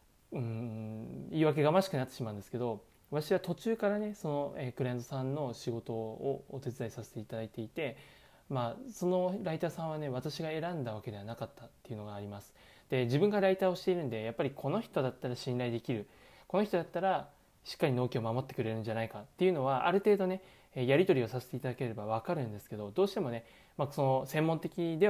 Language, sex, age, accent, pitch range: Japanese, male, 20-39, native, 115-145 Hz